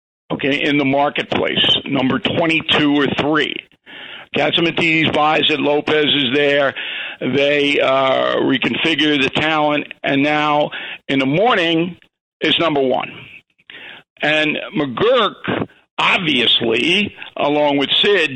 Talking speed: 110 wpm